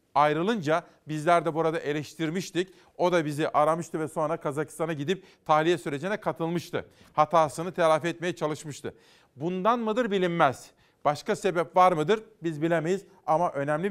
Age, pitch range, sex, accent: 40-59, 150-180 Hz, male, native